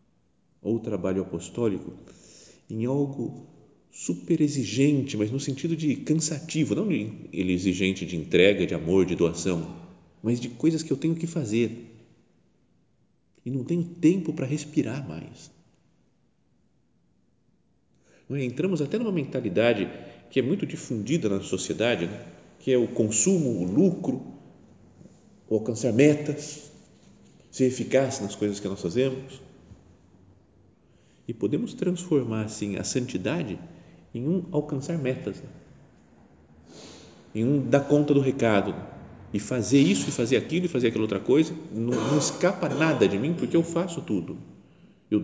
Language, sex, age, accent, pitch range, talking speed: Portuguese, male, 40-59, Brazilian, 100-150 Hz, 135 wpm